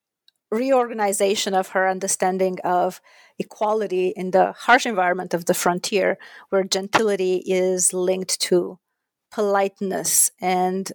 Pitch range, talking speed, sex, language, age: 185-225 Hz, 110 wpm, female, English, 30-49